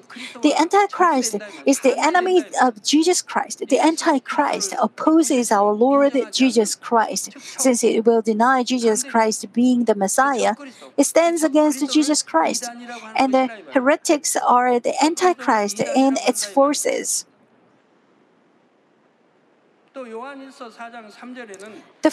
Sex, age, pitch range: female, 50-69, 230-295 Hz